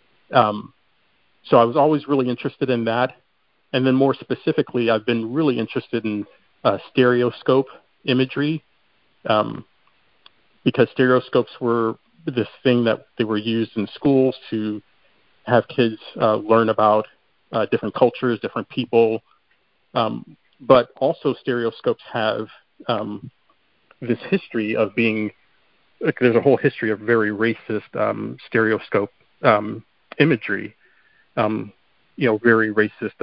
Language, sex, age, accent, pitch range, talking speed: English, male, 40-59, American, 110-130 Hz, 130 wpm